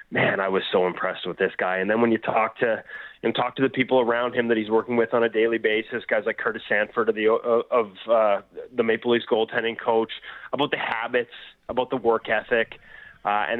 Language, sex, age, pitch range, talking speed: English, male, 20-39, 115-145 Hz, 225 wpm